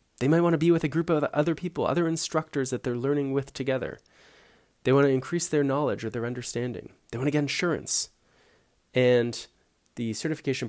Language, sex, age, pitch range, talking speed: English, male, 20-39, 110-150 Hz, 195 wpm